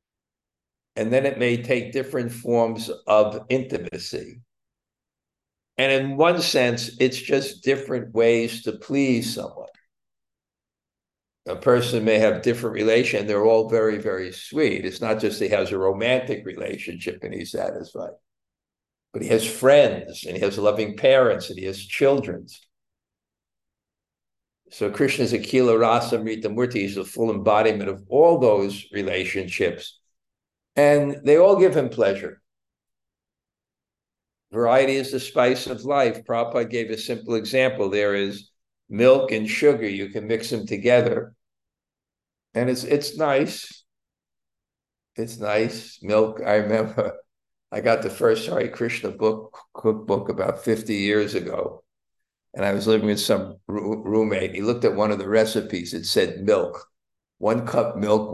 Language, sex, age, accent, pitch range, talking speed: English, male, 60-79, American, 105-125 Hz, 140 wpm